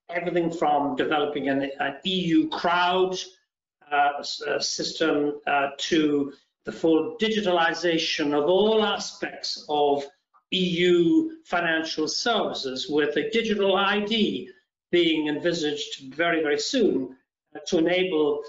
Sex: male